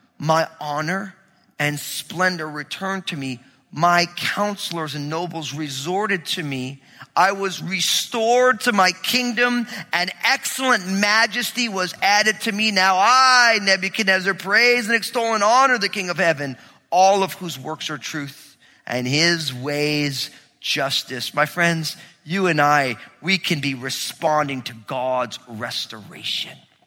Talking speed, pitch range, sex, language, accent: 135 wpm, 165-250 Hz, male, English, American